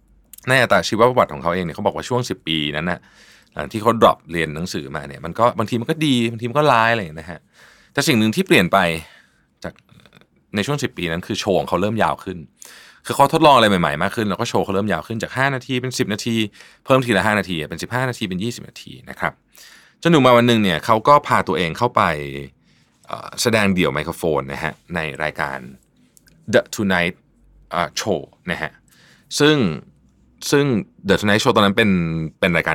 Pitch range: 80-120 Hz